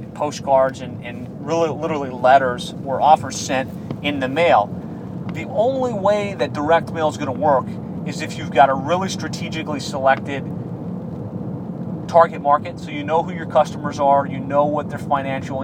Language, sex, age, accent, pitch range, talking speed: English, male, 30-49, American, 135-165 Hz, 170 wpm